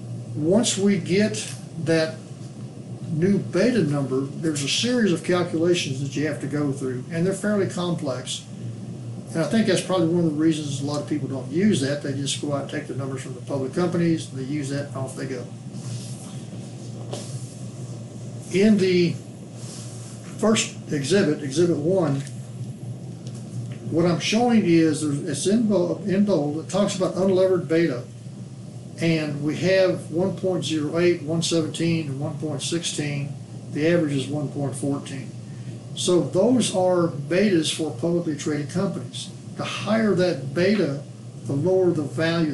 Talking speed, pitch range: 145 wpm, 135-175 Hz